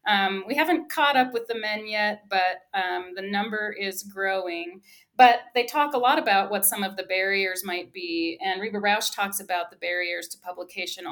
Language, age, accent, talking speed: English, 40-59, American, 200 wpm